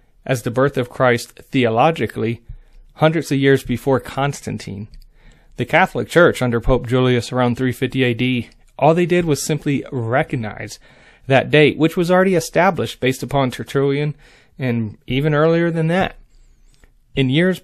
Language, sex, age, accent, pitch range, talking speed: English, male, 30-49, American, 120-150 Hz, 145 wpm